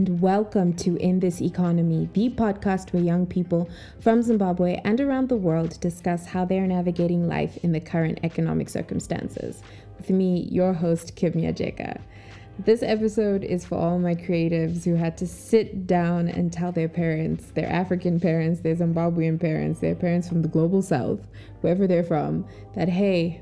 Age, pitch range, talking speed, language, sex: 20-39, 165-195 Hz, 170 wpm, English, female